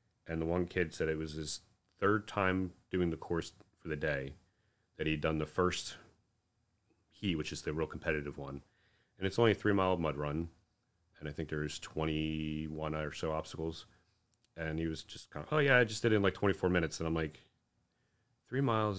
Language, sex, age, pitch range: English, male, 30-49, 80-105 Hz